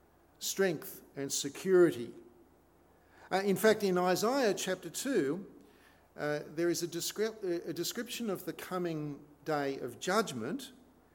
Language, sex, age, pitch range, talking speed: English, male, 50-69, 115-180 Hz, 115 wpm